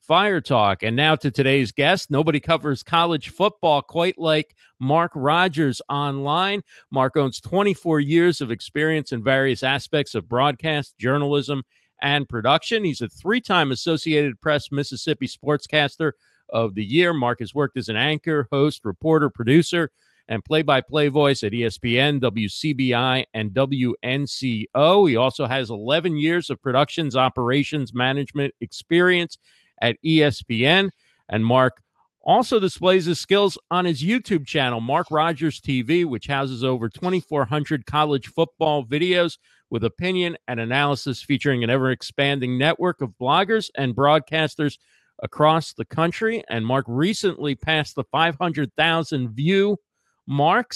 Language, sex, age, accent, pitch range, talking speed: English, male, 50-69, American, 130-165 Hz, 130 wpm